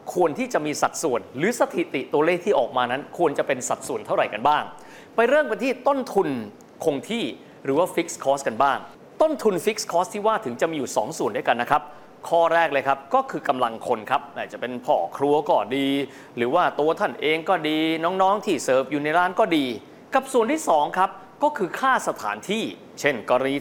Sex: male